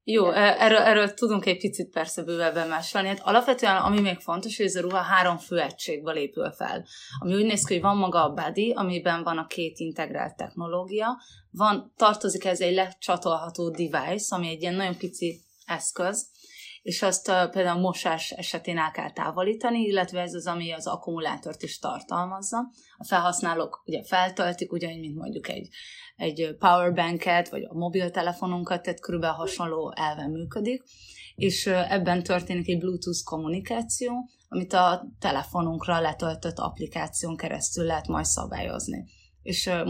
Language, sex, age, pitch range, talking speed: Hungarian, female, 20-39, 165-195 Hz, 155 wpm